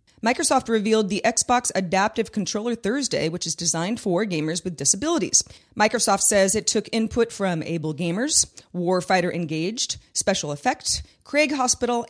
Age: 30-49